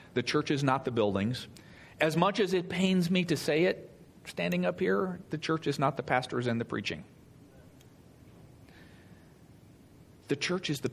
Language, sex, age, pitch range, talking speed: English, male, 50-69, 135-180 Hz, 170 wpm